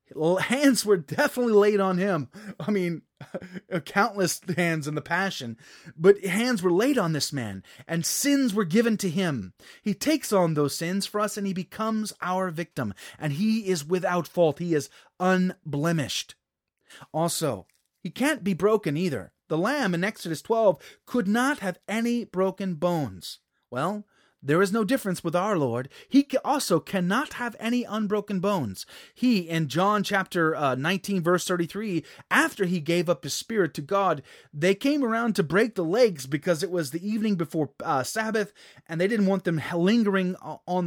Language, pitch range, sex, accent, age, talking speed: English, 165-215 Hz, male, American, 30-49, 170 wpm